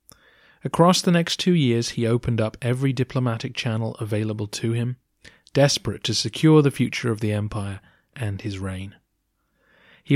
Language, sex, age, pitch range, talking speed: English, male, 30-49, 110-135 Hz, 155 wpm